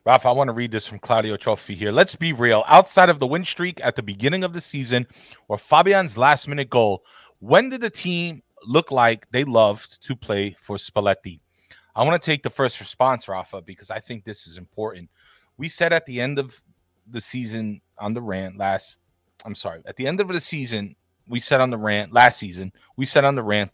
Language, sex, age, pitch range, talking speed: English, male, 30-49, 110-155 Hz, 215 wpm